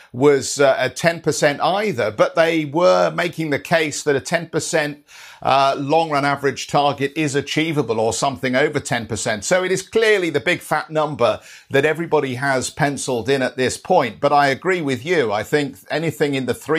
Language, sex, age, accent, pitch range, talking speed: English, male, 50-69, British, 125-155 Hz, 180 wpm